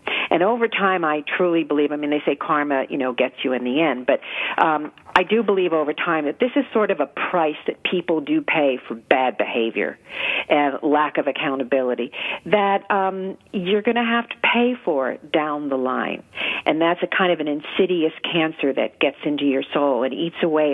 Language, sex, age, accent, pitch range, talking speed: English, female, 50-69, American, 150-195 Hz, 205 wpm